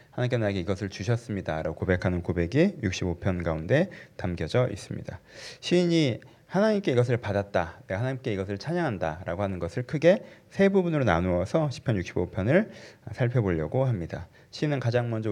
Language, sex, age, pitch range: Korean, male, 40-59, 100-135 Hz